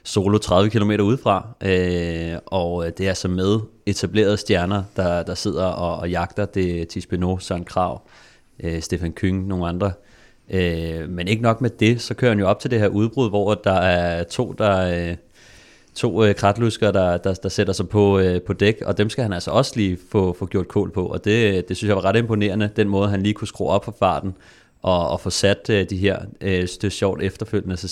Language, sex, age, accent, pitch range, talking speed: Danish, male, 30-49, native, 90-105 Hz, 225 wpm